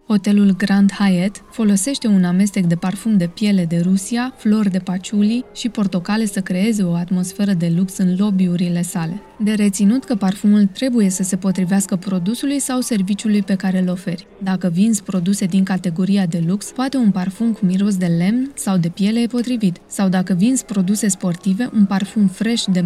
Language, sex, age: Romanian, female, 20-39